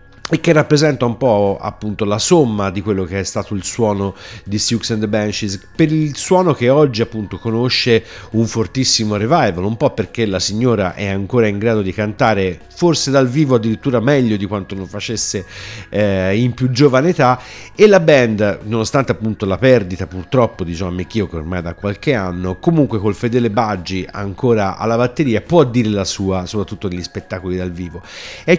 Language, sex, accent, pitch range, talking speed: Italian, male, native, 100-135 Hz, 185 wpm